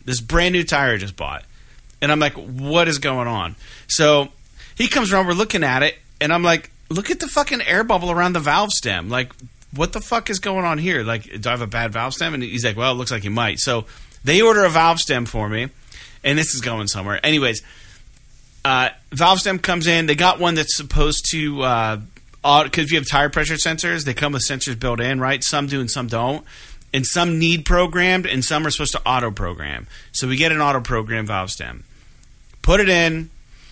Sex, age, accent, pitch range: male, 40-59, American, 120-160 Hz